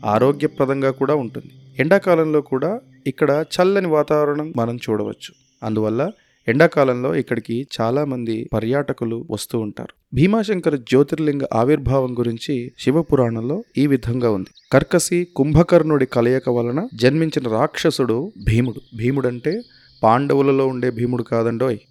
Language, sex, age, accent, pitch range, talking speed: Telugu, male, 30-49, native, 120-150 Hz, 100 wpm